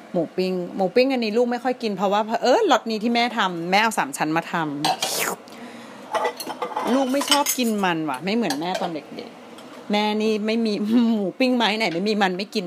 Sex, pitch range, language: female, 170-230 Hz, Thai